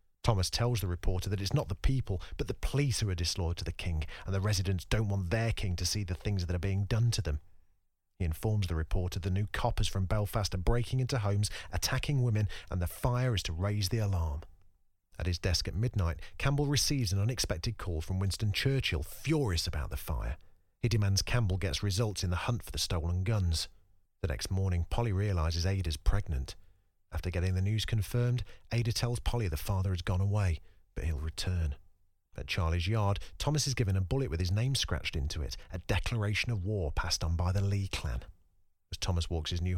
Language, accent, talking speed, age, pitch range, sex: English, British, 210 wpm, 40-59, 90-110 Hz, male